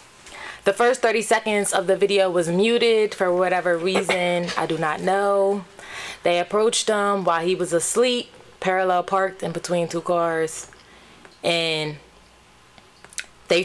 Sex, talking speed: female, 135 wpm